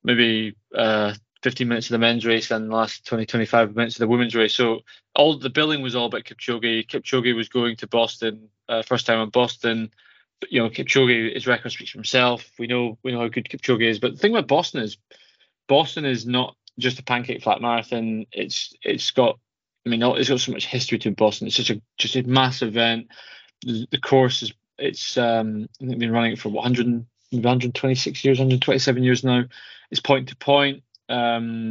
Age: 20-39